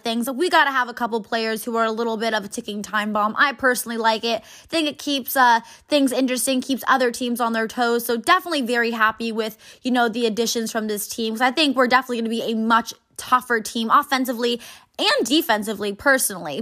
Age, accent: 20-39, American